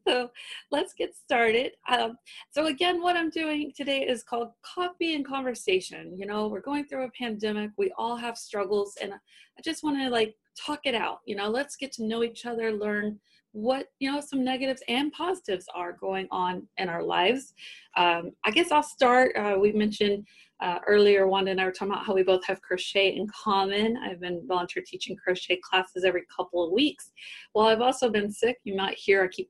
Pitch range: 195-265 Hz